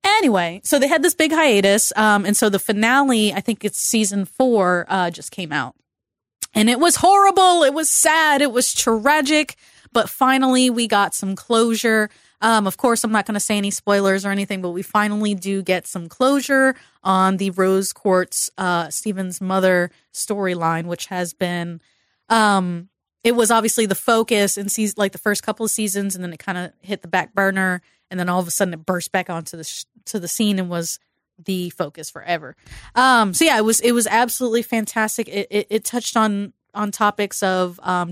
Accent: American